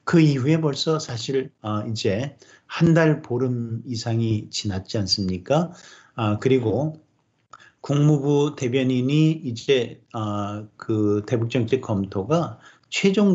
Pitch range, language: 105-145 Hz, Korean